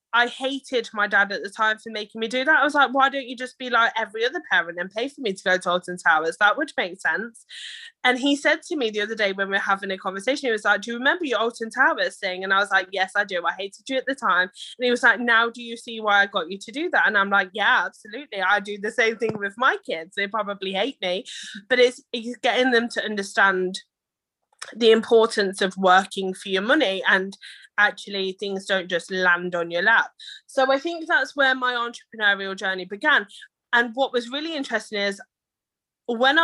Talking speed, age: 240 wpm, 20-39